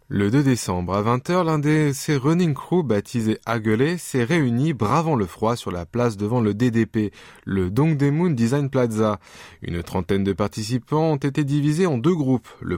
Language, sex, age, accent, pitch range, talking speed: French, male, 20-39, French, 110-155 Hz, 180 wpm